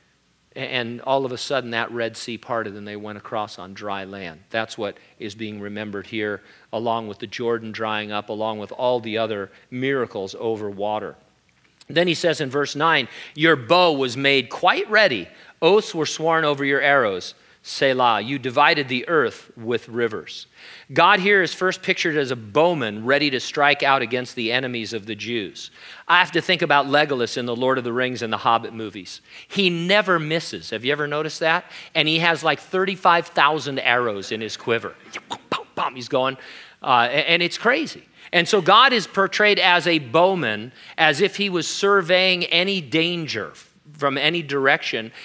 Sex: male